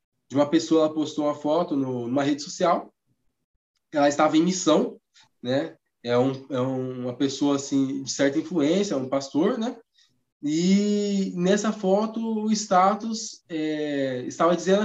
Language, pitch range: Portuguese, 160-205 Hz